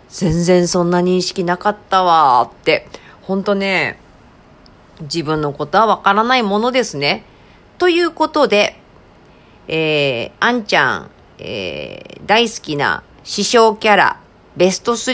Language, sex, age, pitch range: Japanese, female, 40-59, 155-230 Hz